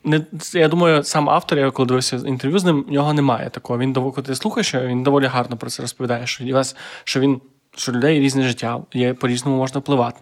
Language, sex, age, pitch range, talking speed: Ukrainian, male, 20-39, 125-145 Hz, 215 wpm